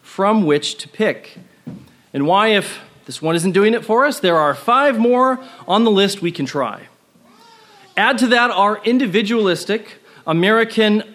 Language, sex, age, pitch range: English, male, 40-59, 170-230 Hz